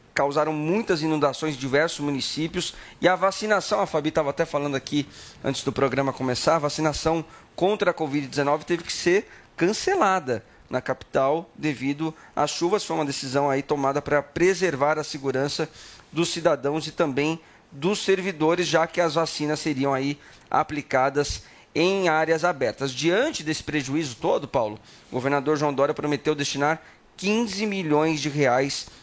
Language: Portuguese